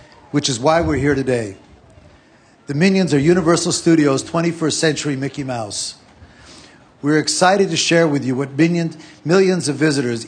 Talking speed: 150 wpm